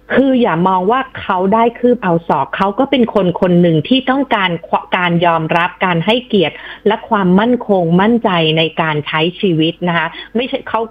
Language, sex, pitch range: Thai, female, 180-240 Hz